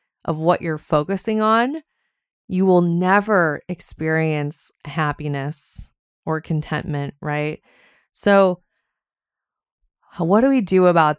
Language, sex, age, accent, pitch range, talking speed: English, female, 20-39, American, 155-185 Hz, 100 wpm